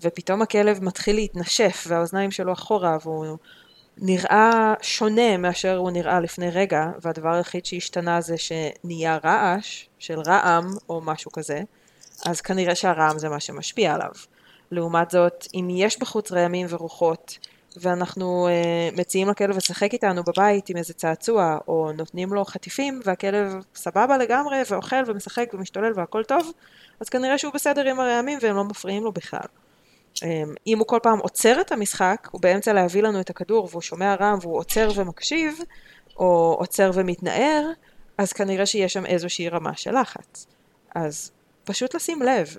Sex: female